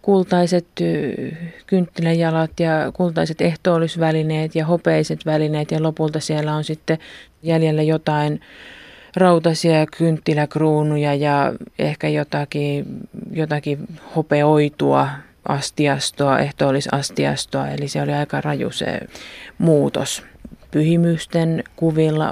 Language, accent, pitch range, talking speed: Finnish, native, 145-170 Hz, 90 wpm